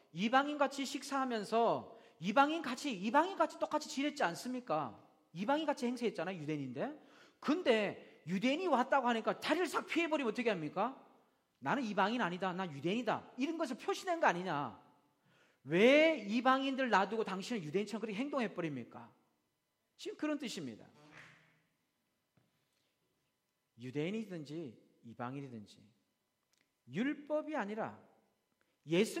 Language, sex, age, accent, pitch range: Korean, male, 40-59, native, 170-270 Hz